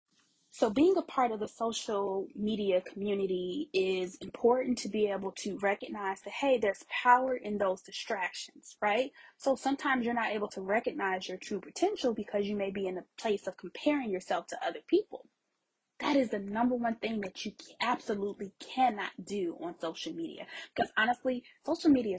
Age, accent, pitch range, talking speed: 20-39, American, 195-255 Hz, 175 wpm